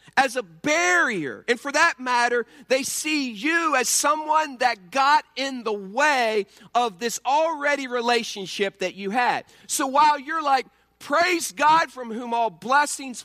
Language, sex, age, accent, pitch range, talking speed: English, male, 40-59, American, 195-285 Hz, 155 wpm